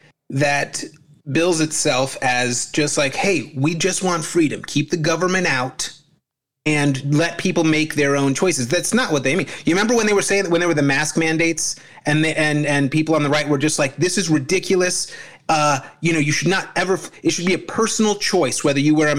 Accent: American